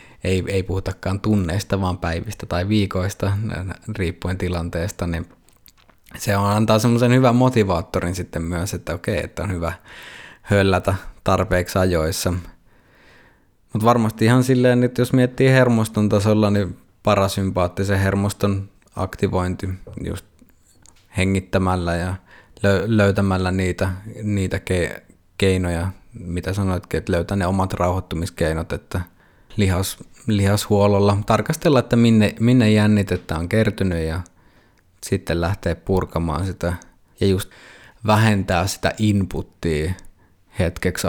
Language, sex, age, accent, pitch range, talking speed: Finnish, male, 20-39, native, 90-105 Hz, 110 wpm